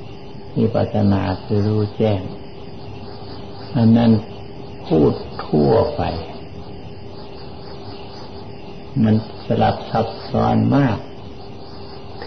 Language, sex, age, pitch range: Thai, male, 60-79, 100-120 Hz